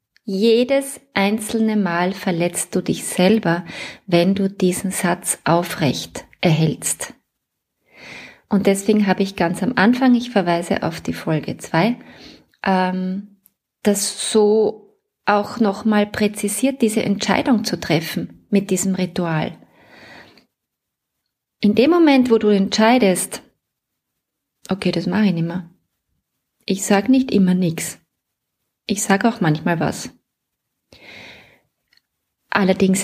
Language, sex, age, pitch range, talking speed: German, female, 30-49, 185-220 Hz, 110 wpm